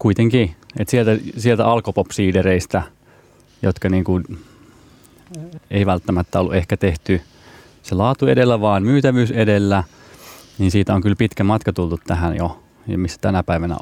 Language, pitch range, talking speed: Finnish, 90-105 Hz, 135 wpm